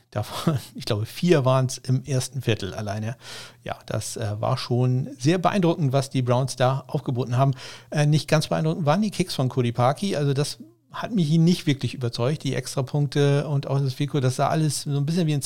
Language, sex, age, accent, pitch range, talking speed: German, male, 50-69, German, 125-155 Hz, 210 wpm